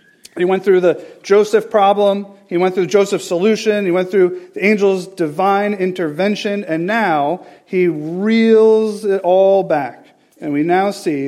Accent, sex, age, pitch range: American, male, 40-59, 165-200 Hz